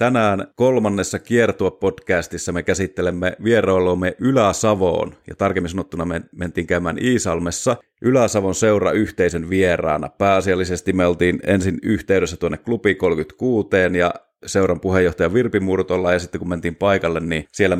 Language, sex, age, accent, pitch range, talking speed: English, male, 30-49, Finnish, 90-105 Hz, 130 wpm